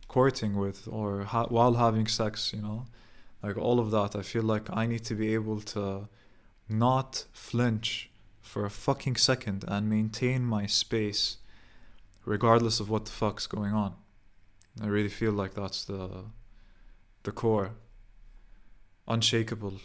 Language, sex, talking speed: English, male, 140 wpm